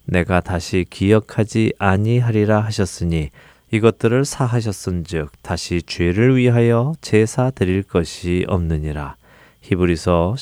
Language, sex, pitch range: Korean, male, 85-115 Hz